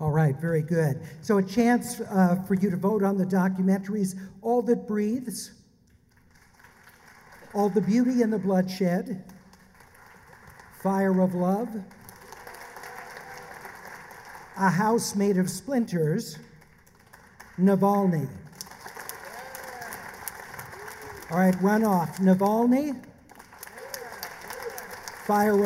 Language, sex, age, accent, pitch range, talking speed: English, male, 60-79, American, 180-220 Hz, 90 wpm